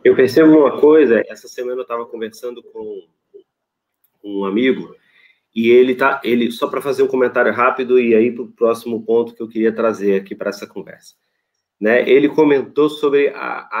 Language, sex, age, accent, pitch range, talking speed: Portuguese, male, 30-49, Brazilian, 120-165 Hz, 180 wpm